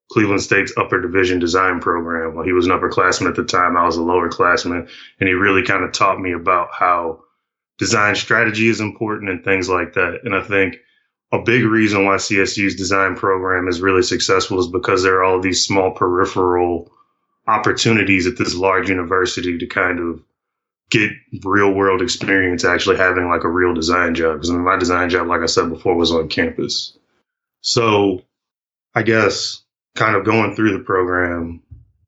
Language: English